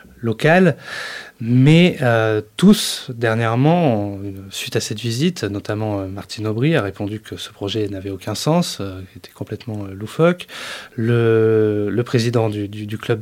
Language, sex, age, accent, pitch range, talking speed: French, male, 20-39, French, 105-135 Hz, 150 wpm